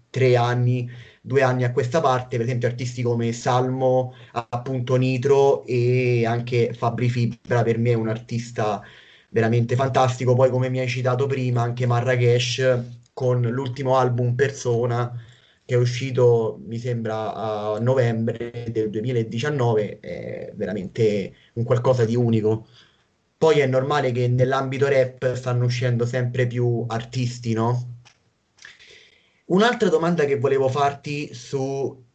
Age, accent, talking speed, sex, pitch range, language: 30-49, native, 130 wpm, male, 120-135 Hz, Italian